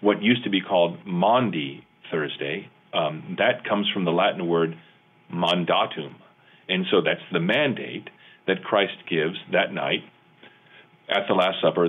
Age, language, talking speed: 40-59, English, 145 wpm